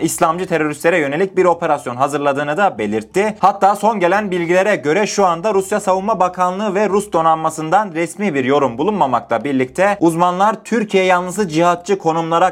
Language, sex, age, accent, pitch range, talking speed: Turkish, male, 30-49, native, 145-195 Hz, 150 wpm